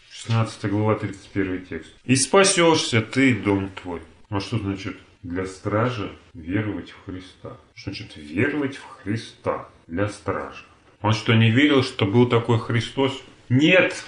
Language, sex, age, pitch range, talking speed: Russian, male, 30-49, 115-165 Hz, 140 wpm